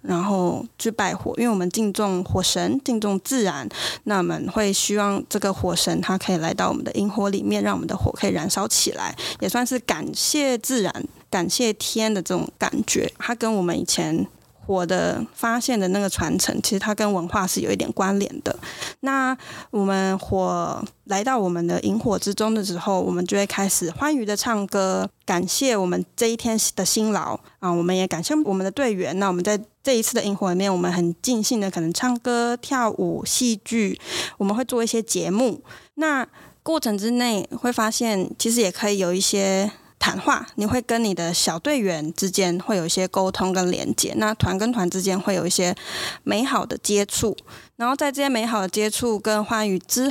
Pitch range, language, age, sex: 185-230 Hz, Chinese, 20-39, female